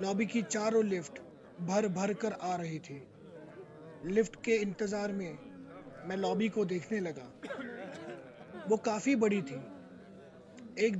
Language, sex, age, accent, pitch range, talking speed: Hindi, male, 30-49, native, 185-225 Hz, 130 wpm